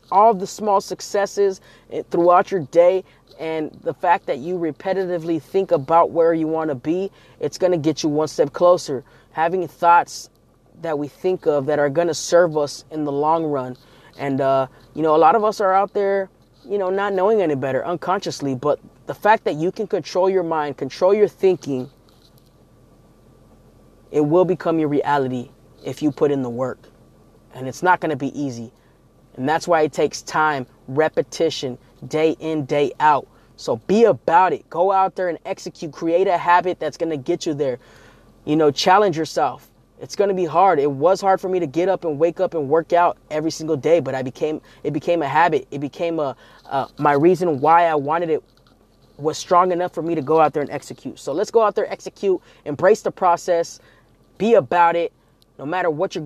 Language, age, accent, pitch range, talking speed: English, 20-39, American, 145-180 Hz, 205 wpm